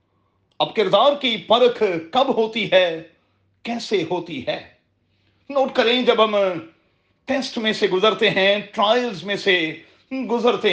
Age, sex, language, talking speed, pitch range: 40-59, male, Urdu, 130 wpm, 170-240 Hz